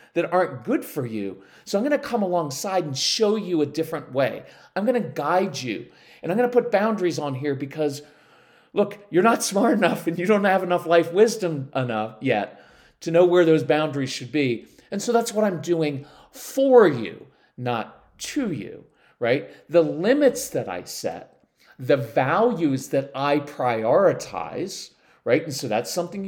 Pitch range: 135-210 Hz